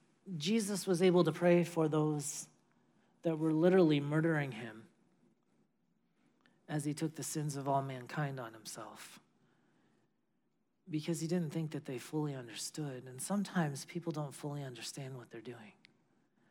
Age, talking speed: 40-59, 140 wpm